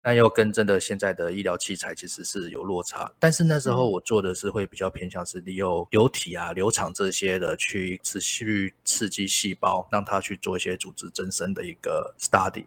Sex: male